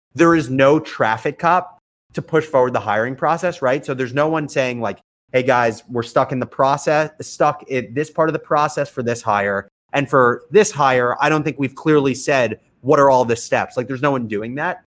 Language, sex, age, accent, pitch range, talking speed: English, male, 30-49, American, 115-150 Hz, 225 wpm